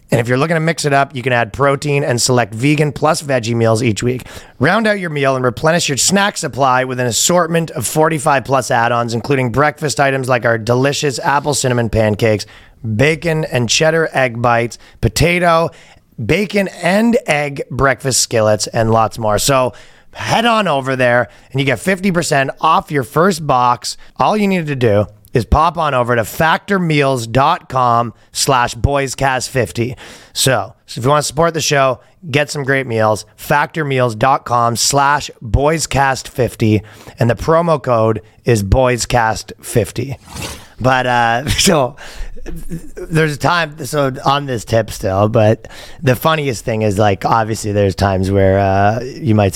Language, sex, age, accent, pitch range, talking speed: English, male, 30-49, American, 110-150 Hz, 160 wpm